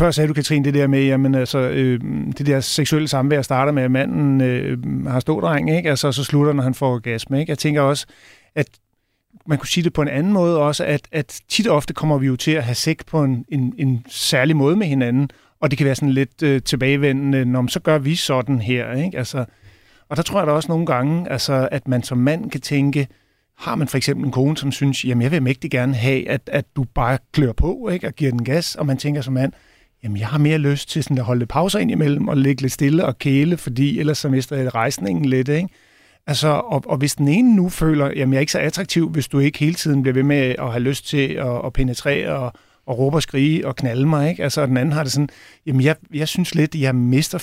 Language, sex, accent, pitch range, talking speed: Danish, male, native, 130-150 Hz, 255 wpm